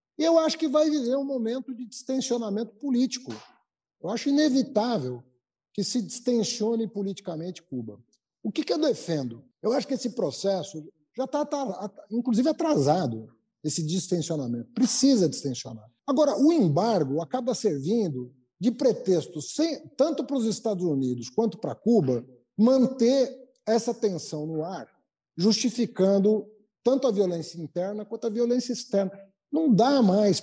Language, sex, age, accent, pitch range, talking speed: Portuguese, male, 50-69, Brazilian, 185-260 Hz, 140 wpm